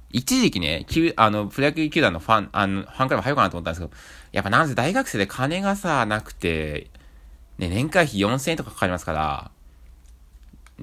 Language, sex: Japanese, male